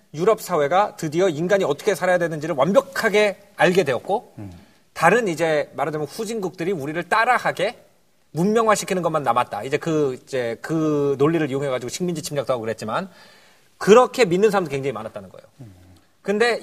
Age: 40-59